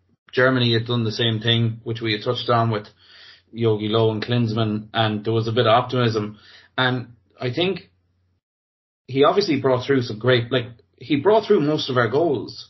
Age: 30-49